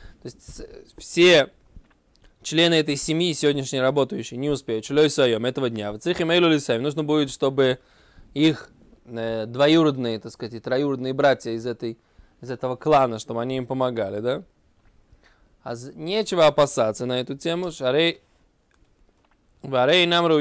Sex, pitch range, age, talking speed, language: male, 130-165 Hz, 20-39, 120 wpm, Russian